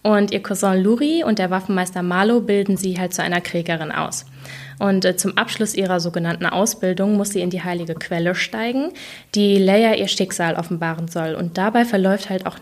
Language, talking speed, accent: German, 185 wpm, German